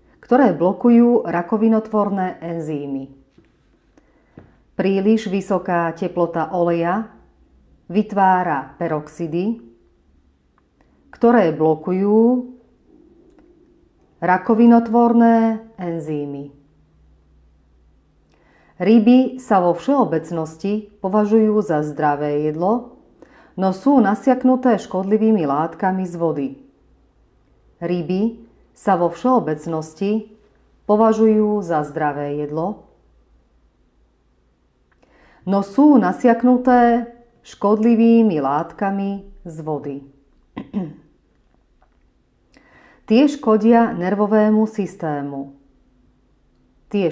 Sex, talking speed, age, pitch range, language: female, 60 wpm, 40-59, 155-225 Hz, Slovak